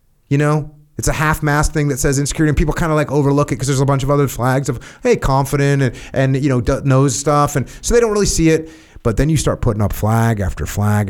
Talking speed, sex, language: 265 wpm, male, English